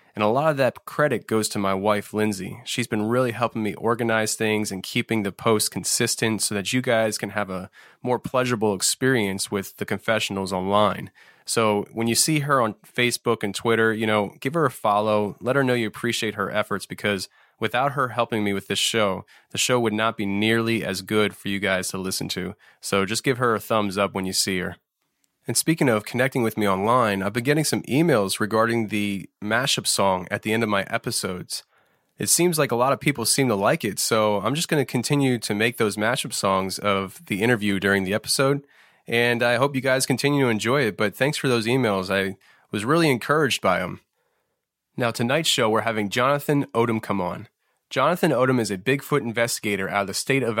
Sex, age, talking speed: male, 20-39, 215 wpm